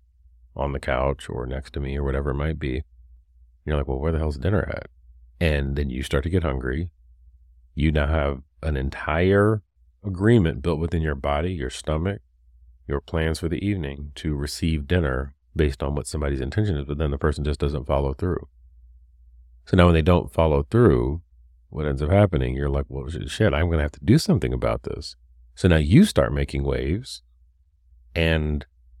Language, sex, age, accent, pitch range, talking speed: English, male, 40-59, American, 65-85 Hz, 190 wpm